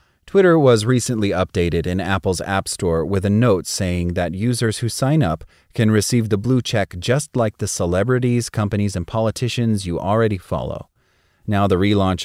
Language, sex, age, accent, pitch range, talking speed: English, male, 30-49, American, 90-115 Hz, 170 wpm